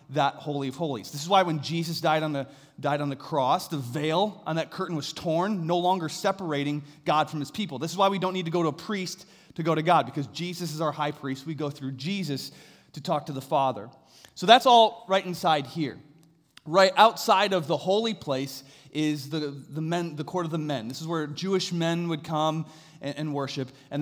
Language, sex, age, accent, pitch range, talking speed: English, male, 30-49, American, 145-175 Hz, 230 wpm